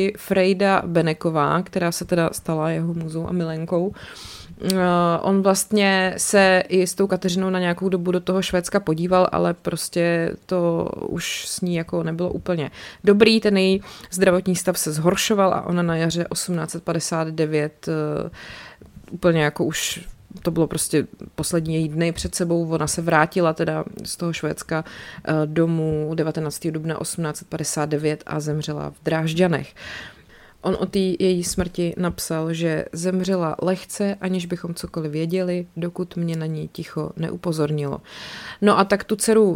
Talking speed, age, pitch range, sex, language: 145 wpm, 20-39, 160-190 Hz, female, Czech